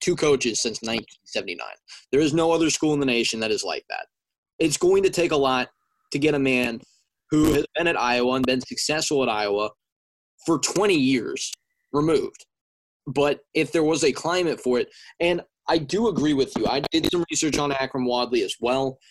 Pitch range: 130-180 Hz